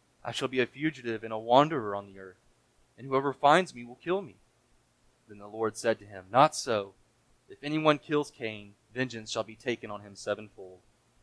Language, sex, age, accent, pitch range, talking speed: English, male, 20-39, American, 105-125 Hz, 200 wpm